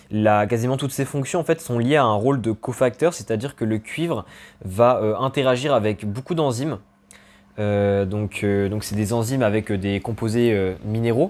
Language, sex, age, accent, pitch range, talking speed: French, male, 20-39, French, 105-130 Hz, 190 wpm